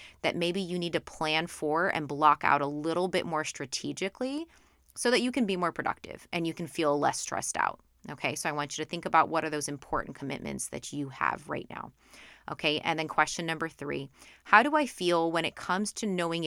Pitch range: 145-185 Hz